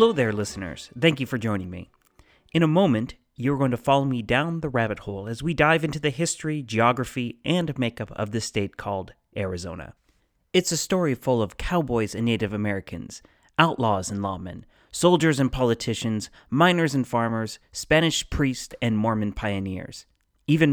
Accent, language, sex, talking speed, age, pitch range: American, English, male, 170 wpm, 30-49, 110-155 Hz